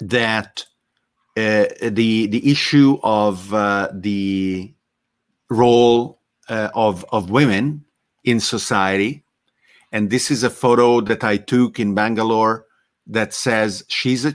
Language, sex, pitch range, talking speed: English, male, 105-130 Hz, 120 wpm